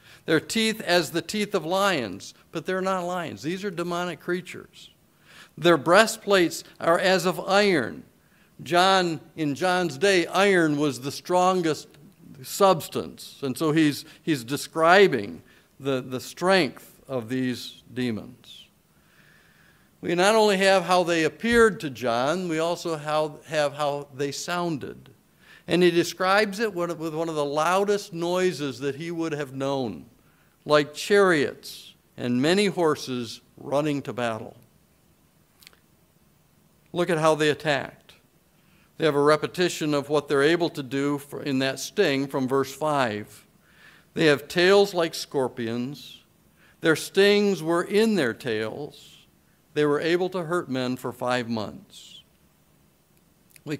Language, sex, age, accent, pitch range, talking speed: English, male, 50-69, American, 140-180 Hz, 135 wpm